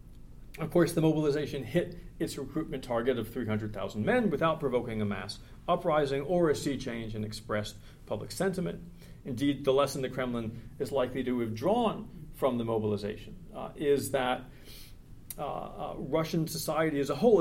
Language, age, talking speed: English, 40-59, 160 wpm